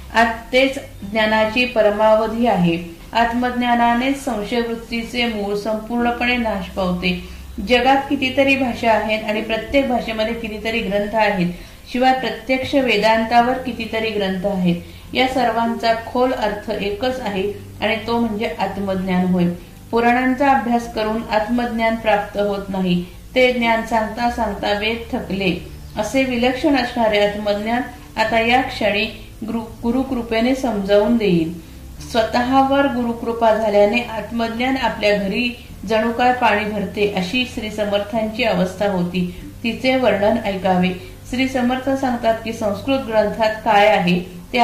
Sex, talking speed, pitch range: female, 115 wpm, 205-240 Hz